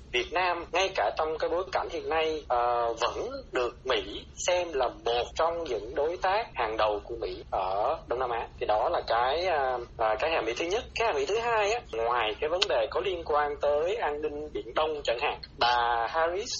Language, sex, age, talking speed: Vietnamese, male, 20-39, 225 wpm